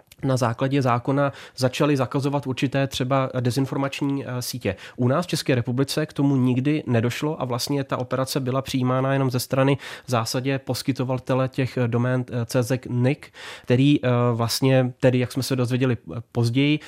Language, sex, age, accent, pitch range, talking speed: Czech, male, 30-49, native, 125-145 Hz, 145 wpm